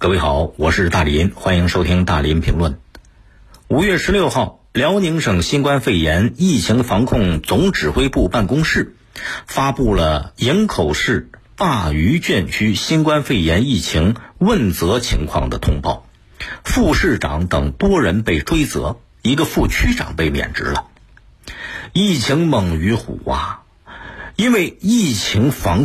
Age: 50-69